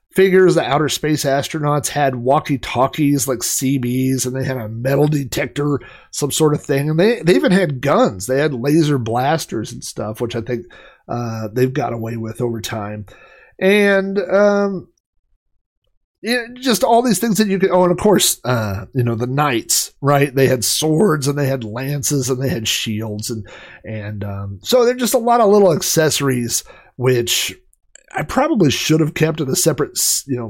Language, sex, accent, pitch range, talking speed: English, male, American, 115-170 Hz, 190 wpm